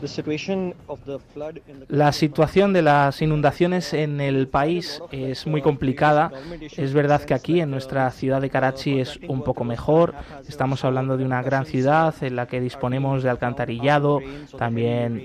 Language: Spanish